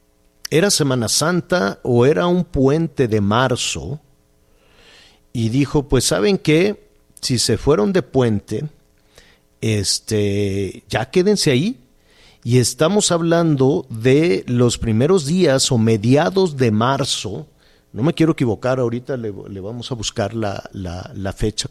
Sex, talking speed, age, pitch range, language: male, 135 wpm, 50-69, 105-140 Hz, Spanish